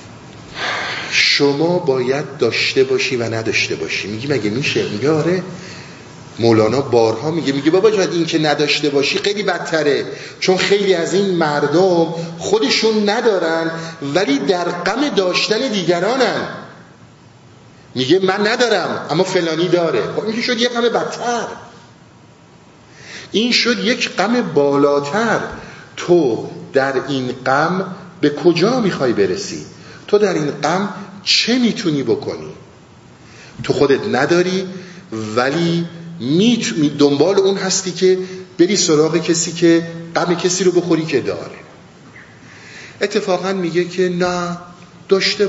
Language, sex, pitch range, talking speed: Persian, male, 155-205 Hz, 120 wpm